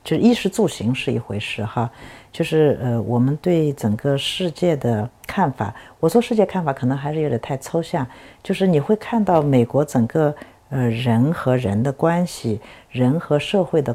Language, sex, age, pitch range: Chinese, female, 50-69, 115-155 Hz